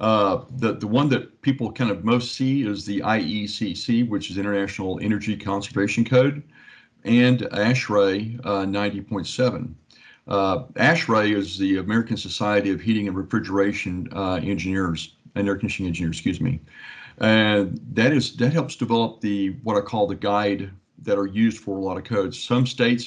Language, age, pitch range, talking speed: English, 50-69, 95-120 Hz, 165 wpm